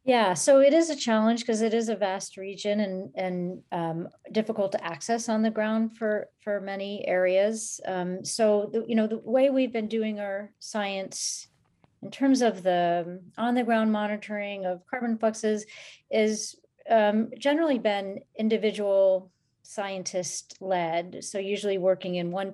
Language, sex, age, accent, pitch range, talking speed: English, female, 40-59, American, 190-220 Hz, 150 wpm